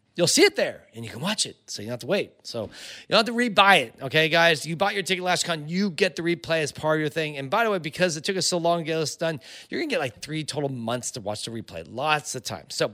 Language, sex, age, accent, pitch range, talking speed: English, male, 30-49, American, 140-195 Hz, 320 wpm